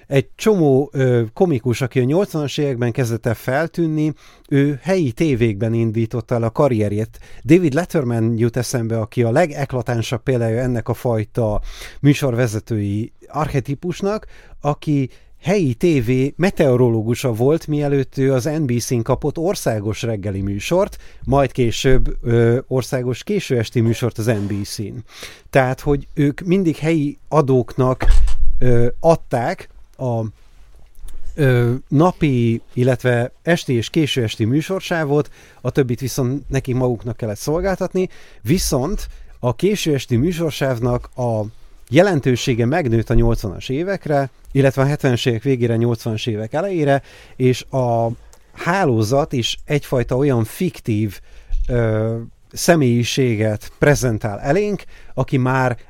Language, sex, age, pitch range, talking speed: Hungarian, male, 30-49, 115-145 Hz, 115 wpm